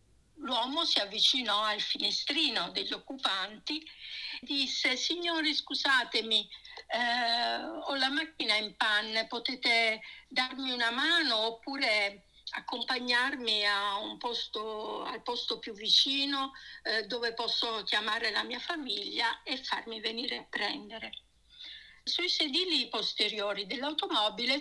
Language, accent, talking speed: Italian, native, 105 wpm